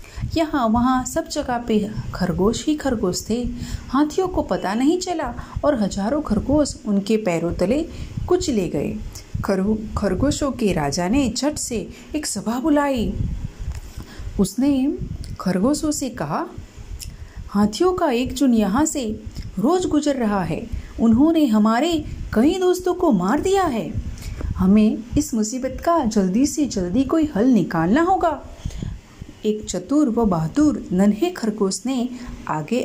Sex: female